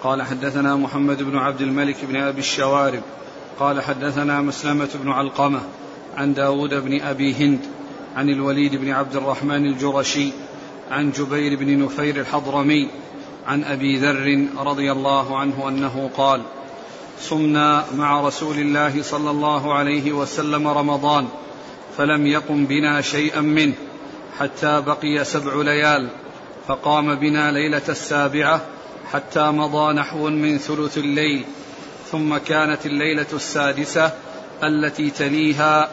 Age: 40-59